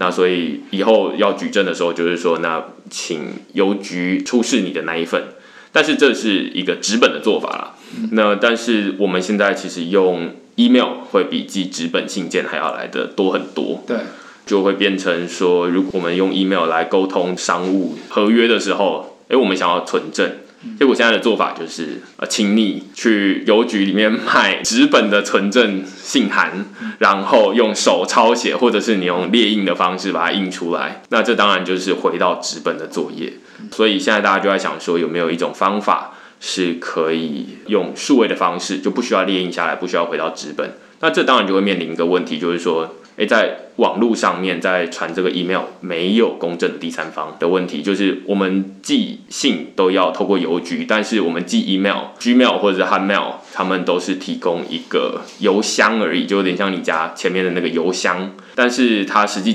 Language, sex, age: Chinese, male, 20-39